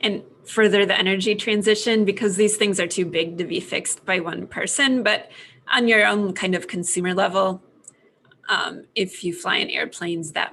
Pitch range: 180-215 Hz